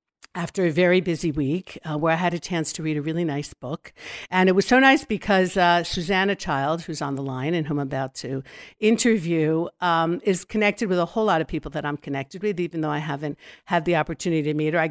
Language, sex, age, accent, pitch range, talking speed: English, female, 50-69, American, 155-190 Hz, 240 wpm